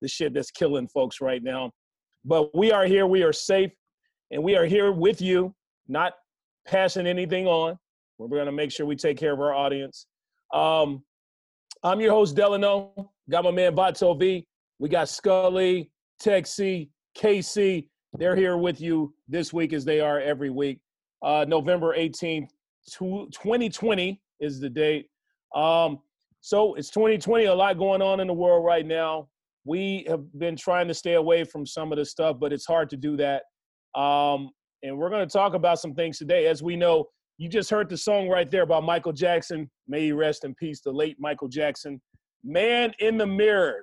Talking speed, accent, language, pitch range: 185 wpm, American, English, 150-195 Hz